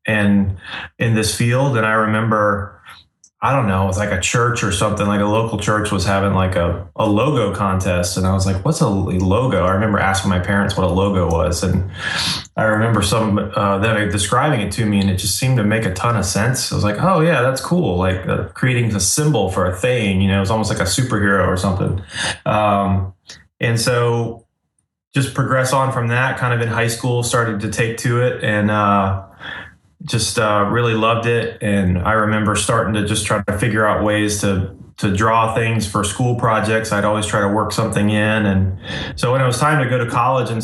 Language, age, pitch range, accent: English, 20-39, 100-115 Hz, American